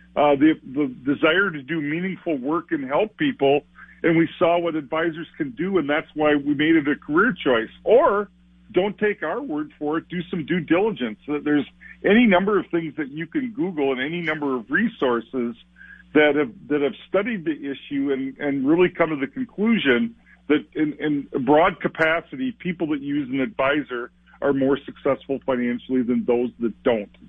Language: English